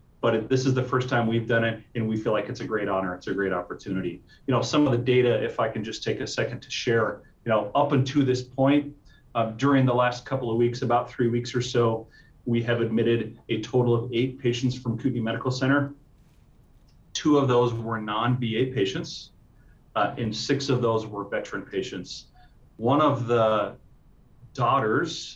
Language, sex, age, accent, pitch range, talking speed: English, male, 30-49, American, 110-130 Hz, 200 wpm